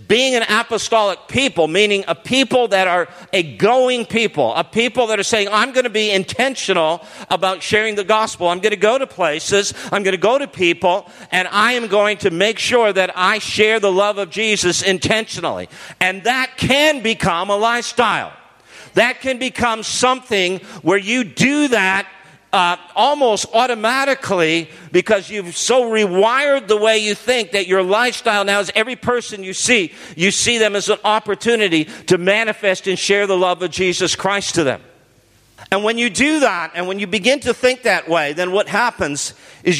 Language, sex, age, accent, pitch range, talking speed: English, male, 50-69, American, 185-230 Hz, 180 wpm